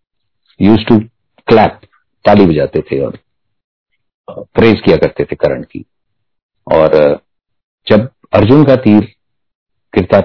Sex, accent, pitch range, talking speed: male, native, 90-110 Hz, 110 wpm